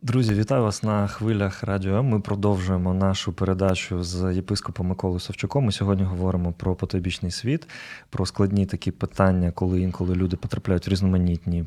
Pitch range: 100-125 Hz